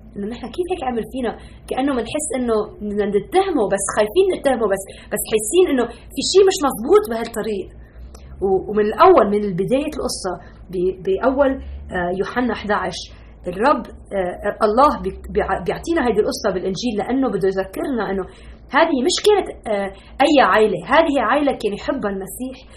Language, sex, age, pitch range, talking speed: Arabic, female, 20-39, 210-320 Hz, 135 wpm